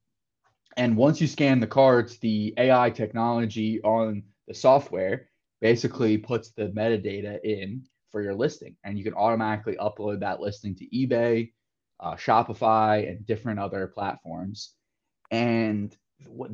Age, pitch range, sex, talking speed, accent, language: 20-39, 105-125 Hz, male, 135 wpm, American, English